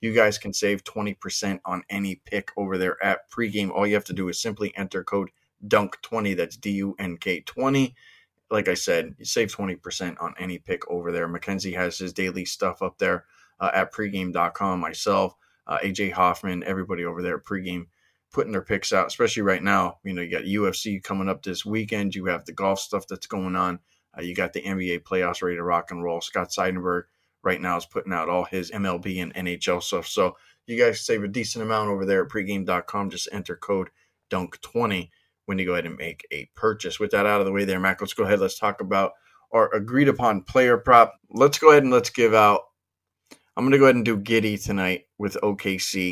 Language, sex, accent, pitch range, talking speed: English, male, American, 90-105 Hz, 215 wpm